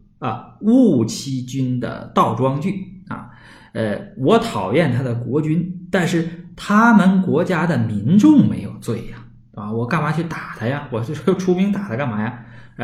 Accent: native